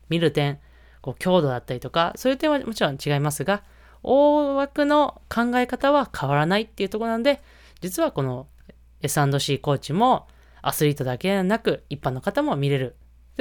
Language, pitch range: Japanese, 130-200 Hz